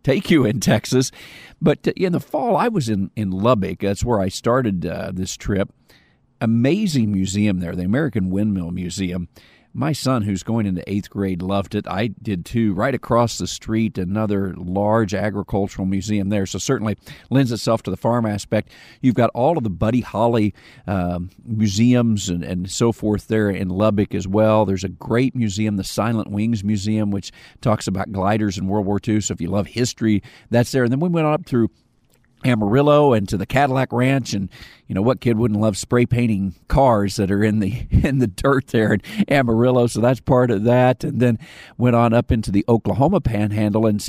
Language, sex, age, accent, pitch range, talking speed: English, male, 50-69, American, 100-120 Hz, 195 wpm